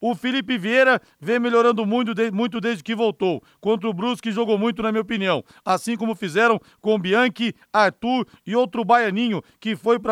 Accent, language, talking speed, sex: Brazilian, Portuguese, 170 wpm, male